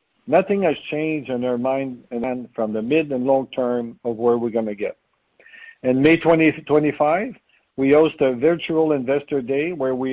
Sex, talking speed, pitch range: male, 185 wpm, 130-155 Hz